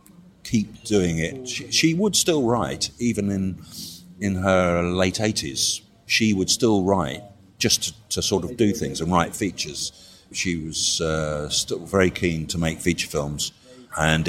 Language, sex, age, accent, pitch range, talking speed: English, male, 50-69, British, 85-105 Hz, 165 wpm